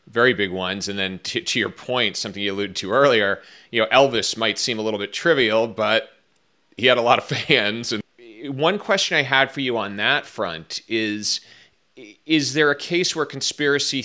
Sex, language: male, English